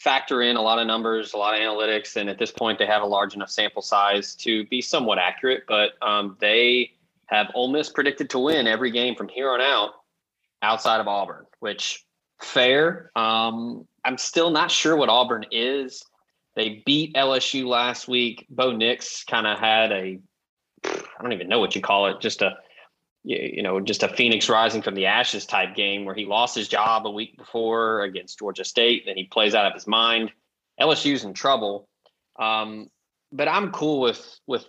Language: English